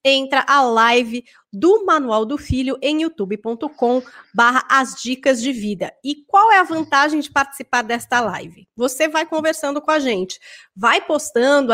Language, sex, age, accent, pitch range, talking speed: Portuguese, female, 20-39, Brazilian, 225-290 Hz, 155 wpm